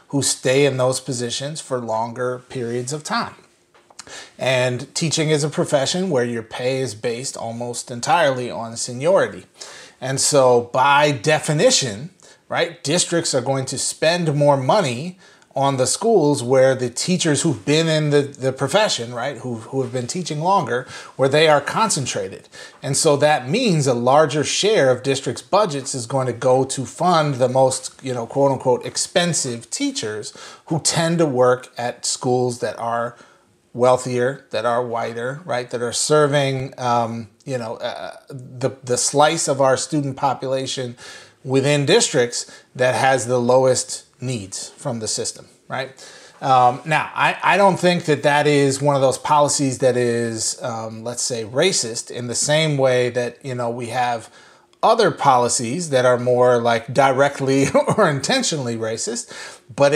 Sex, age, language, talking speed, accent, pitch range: male, 30-49, English, 160 wpm, American, 125-150 Hz